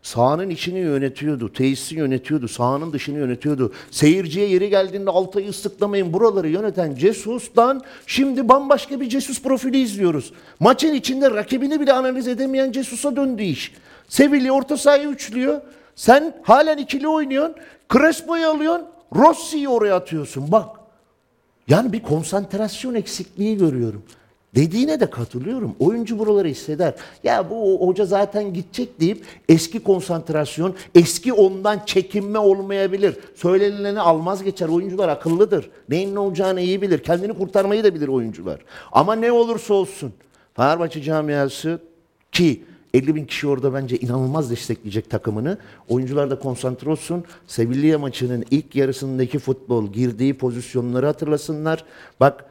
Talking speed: 125 wpm